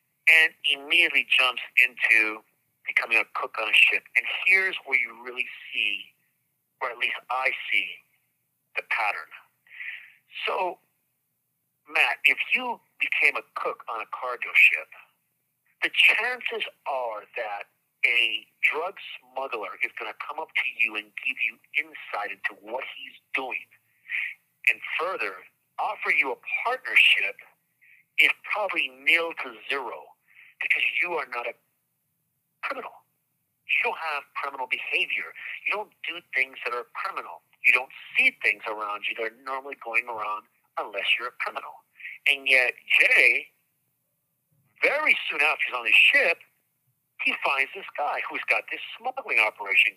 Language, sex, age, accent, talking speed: English, male, 50-69, American, 145 wpm